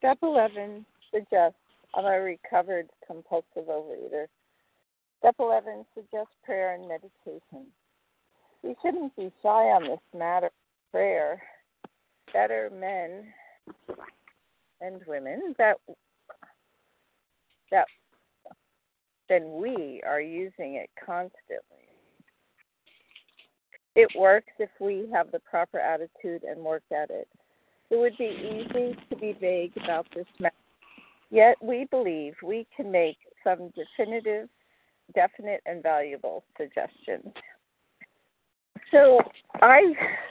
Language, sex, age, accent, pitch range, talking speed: English, female, 50-69, American, 165-220 Hz, 105 wpm